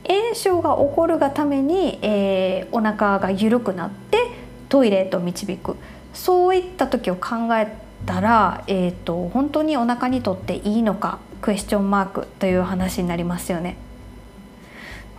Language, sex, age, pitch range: Japanese, female, 20-39, 185-245 Hz